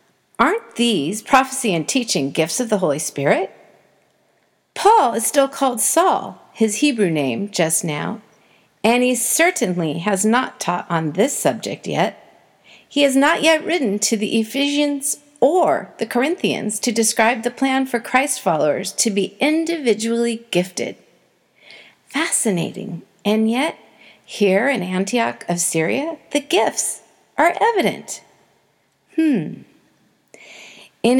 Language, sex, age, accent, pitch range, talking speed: English, female, 50-69, American, 200-270 Hz, 125 wpm